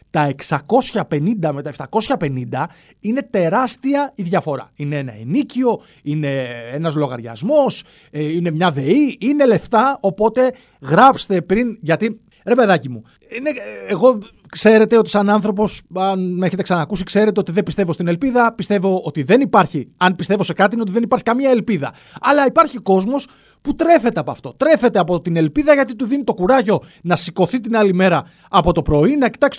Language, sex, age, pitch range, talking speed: Greek, male, 30-49, 160-235 Hz, 165 wpm